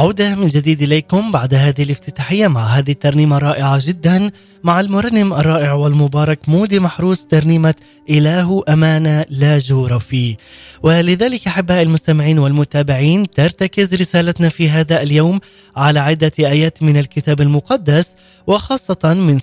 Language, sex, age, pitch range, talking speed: Arabic, male, 20-39, 150-185 Hz, 125 wpm